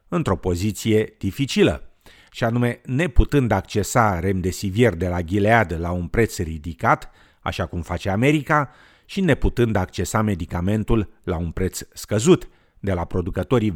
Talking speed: 130 wpm